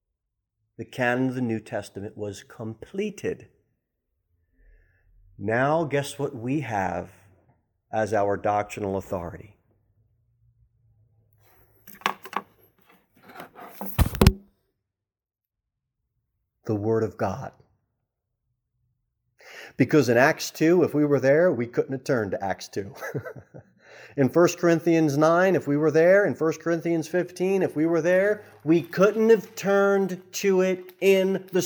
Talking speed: 115 wpm